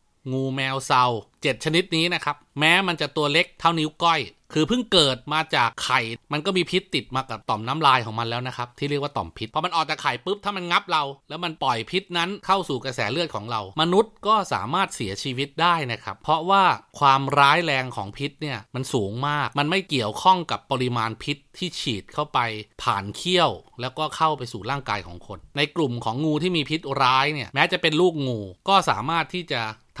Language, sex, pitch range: Thai, male, 120-175 Hz